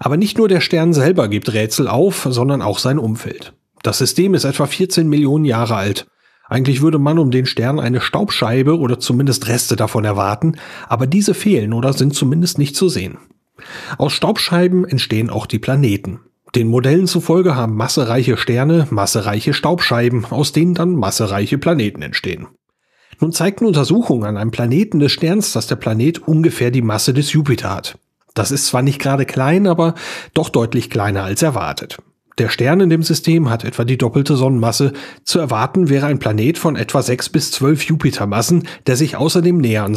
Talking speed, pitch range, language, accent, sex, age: 175 wpm, 115-160 Hz, German, German, male, 40-59